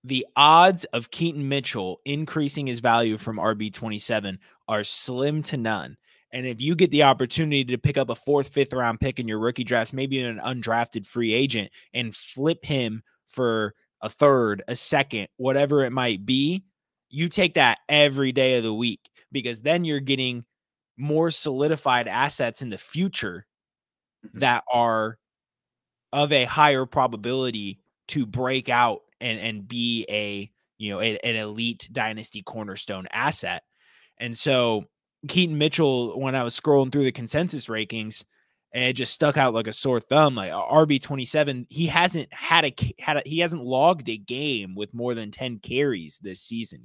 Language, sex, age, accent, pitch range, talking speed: English, male, 20-39, American, 115-145 Hz, 165 wpm